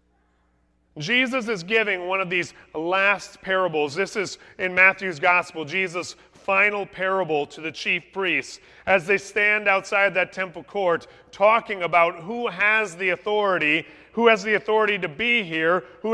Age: 30-49